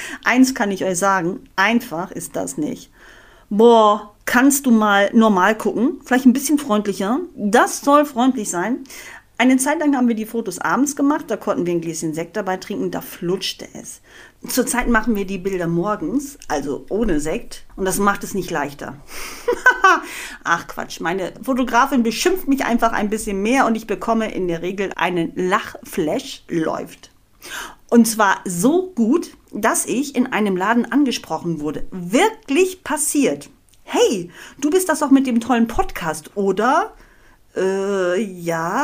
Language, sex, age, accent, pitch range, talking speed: German, female, 50-69, German, 200-275 Hz, 160 wpm